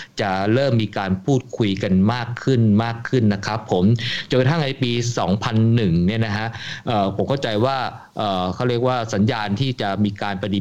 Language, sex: Thai, male